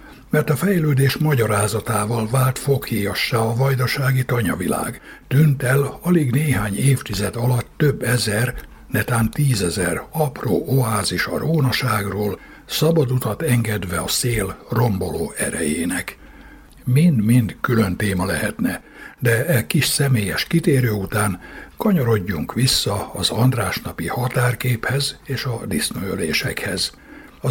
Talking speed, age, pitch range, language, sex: 105 wpm, 60-79, 105-135 Hz, Hungarian, male